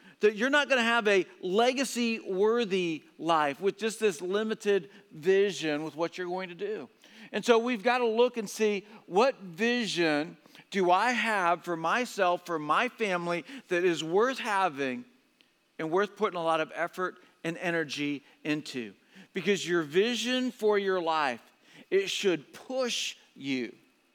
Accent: American